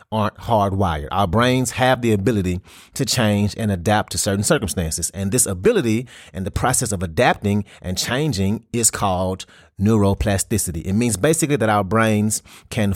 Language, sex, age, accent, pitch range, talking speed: English, male, 30-49, American, 95-120 Hz, 155 wpm